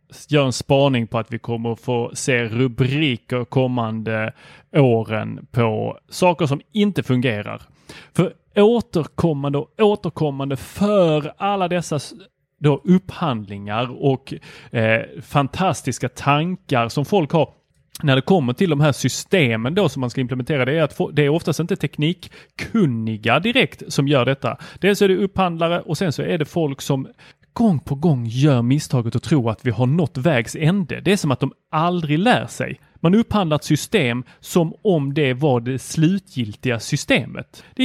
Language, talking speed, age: Swedish, 165 wpm, 30-49